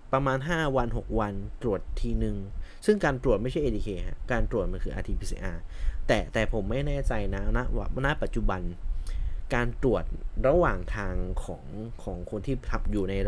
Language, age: Thai, 20-39